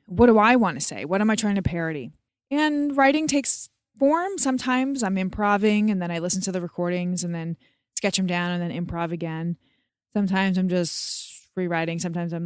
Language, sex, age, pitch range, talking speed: English, female, 20-39, 170-220 Hz, 195 wpm